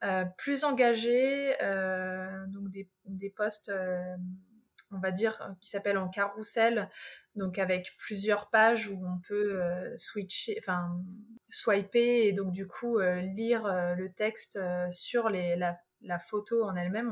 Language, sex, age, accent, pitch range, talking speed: French, female, 20-39, French, 195-245 Hz, 155 wpm